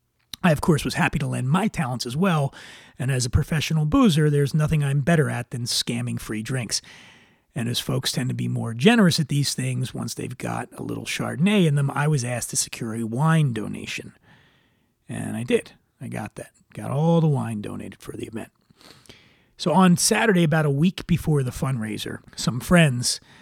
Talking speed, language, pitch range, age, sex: 195 wpm, English, 115-160 Hz, 30-49, male